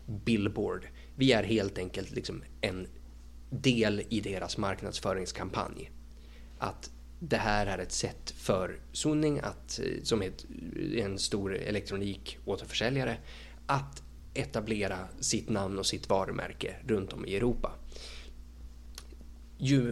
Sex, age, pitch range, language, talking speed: male, 20-39, 75-110 Hz, Swedish, 115 wpm